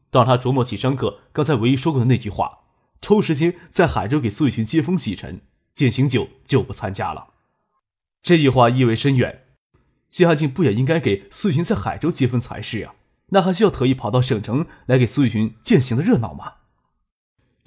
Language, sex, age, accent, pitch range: Chinese, male, 20-39, native, 115-155 Hz